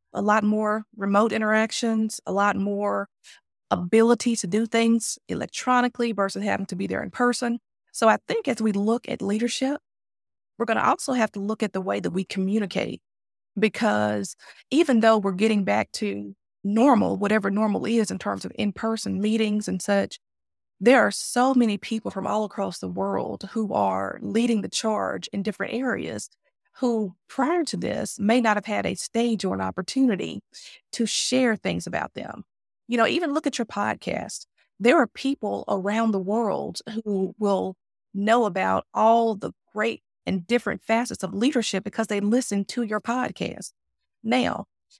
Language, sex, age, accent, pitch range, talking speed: English, female, 30-49, American, 200-235 Hz, 170 wpm